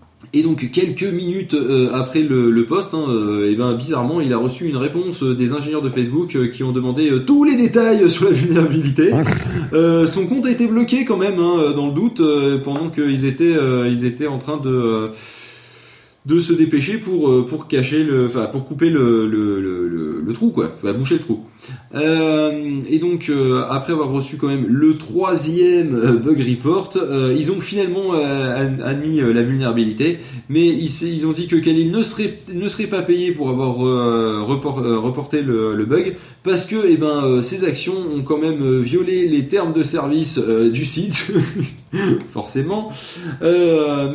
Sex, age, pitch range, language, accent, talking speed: male, 20-39, 125-165 Hz, French, French, 190 wpm